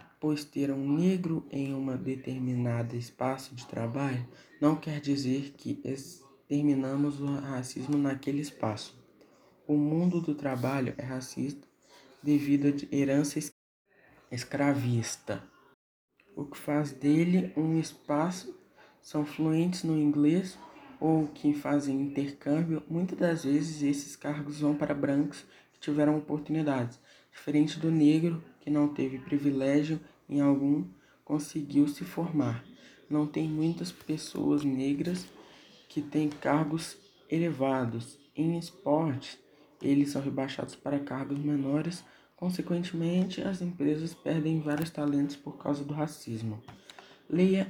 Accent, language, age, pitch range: Brazilian, Portuguese, 20-39, 140-155 Hz